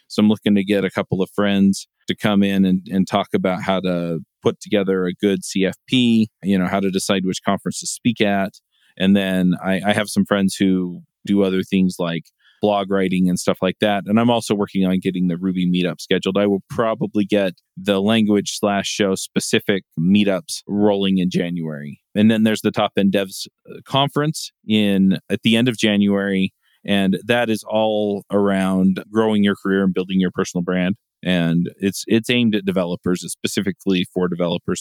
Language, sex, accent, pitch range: English, male, American, 95-105 Hz